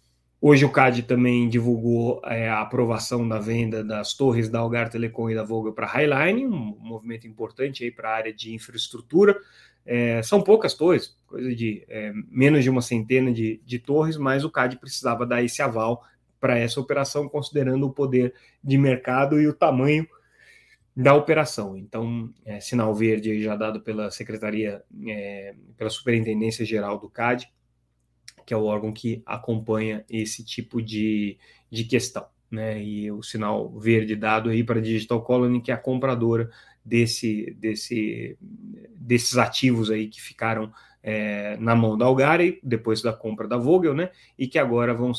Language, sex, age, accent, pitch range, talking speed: Portuguese, male, 20-39, Brazilian, 110-130 Hz, 155 wpm